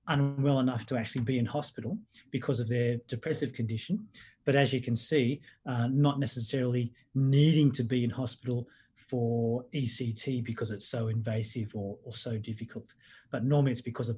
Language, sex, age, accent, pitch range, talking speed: English, male, 30-49, Australian, 120-150 Hz, 170 wpm